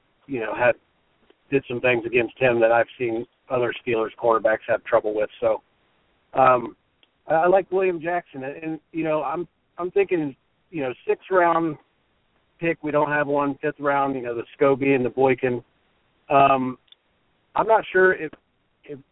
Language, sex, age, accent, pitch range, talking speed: English, male, 40-59, American, 125-150 Hz, 175 wpm